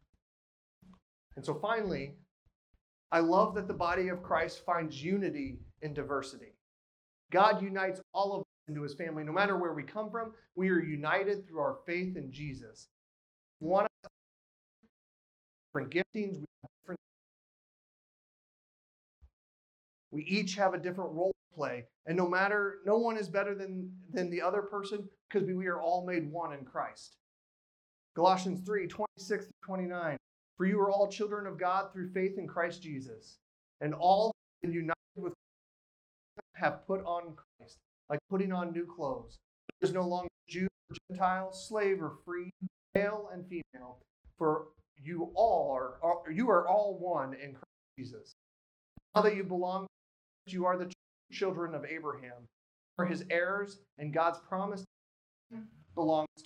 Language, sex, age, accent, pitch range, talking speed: English, male, 30-49, American, 150-195 Hz, 150 wpm